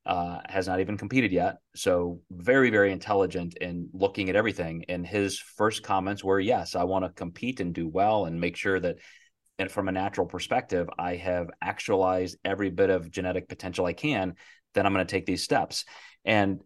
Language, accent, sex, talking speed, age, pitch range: English, American, male, 195 wpm, 30-49, 90-105 Hz